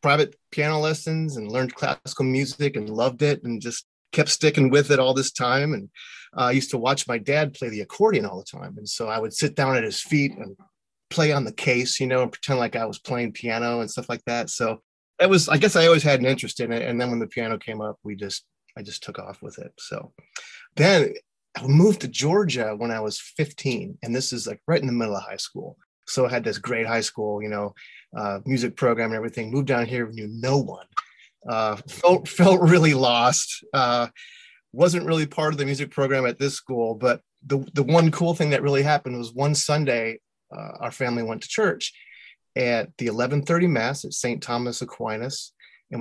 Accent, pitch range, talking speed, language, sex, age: American, 115-150 Hz, 220 wpm, English, male, 30-49